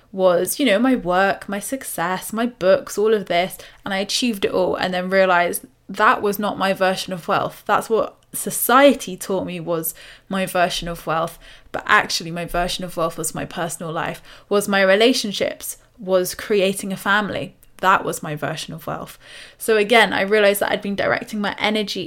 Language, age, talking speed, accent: English, 20-39, 190 wpm, British